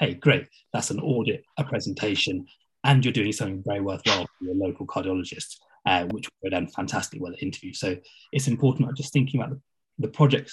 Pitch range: 100-140 Hz